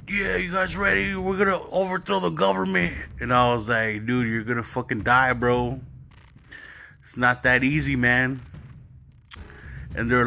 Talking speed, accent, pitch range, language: 165 wpm, American, 100-130 Hz, English